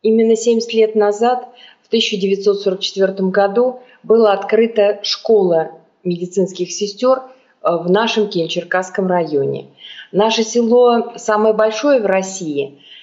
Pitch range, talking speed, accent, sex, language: 190-225 Hz, 100 wpm, native, female, Russian